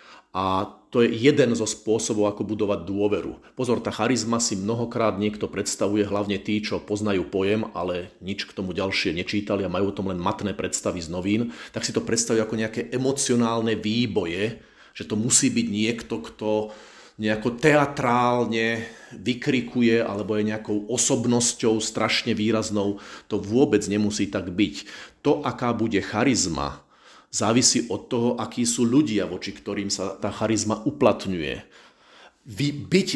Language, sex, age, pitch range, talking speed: Slovak, male, 40-59, 105-120 Hz, 145 wpm